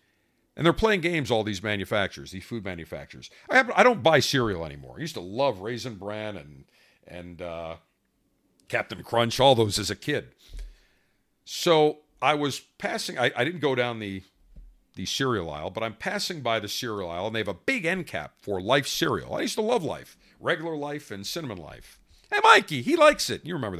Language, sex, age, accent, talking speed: English, male, 50-69, American, 195 wpm